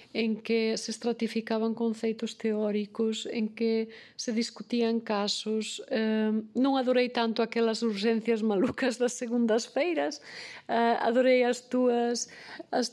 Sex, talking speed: female, 120 wpm